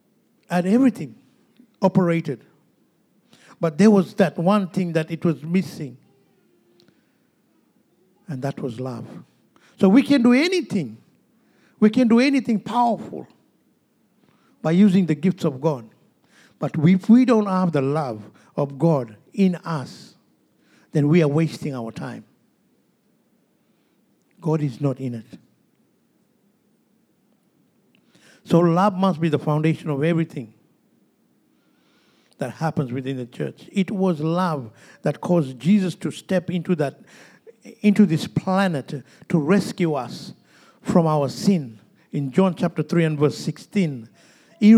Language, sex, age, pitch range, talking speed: English, male, 60-79, 150-195 Hz, 125 wpm